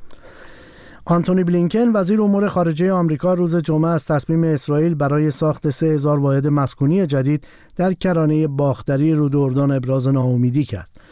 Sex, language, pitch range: male, Persian, 135-170 Hz